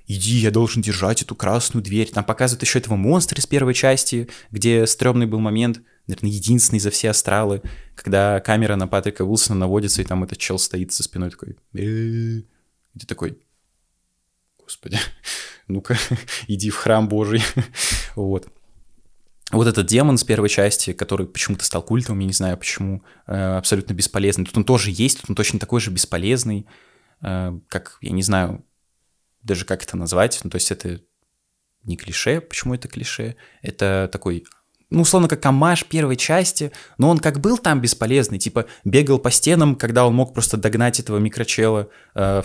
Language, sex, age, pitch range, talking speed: Russian, male, 20-39, 100-125 Hz, 165 wpm